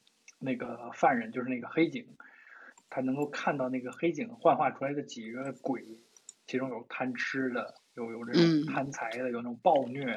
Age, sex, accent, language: 20-39, male, native, Chinese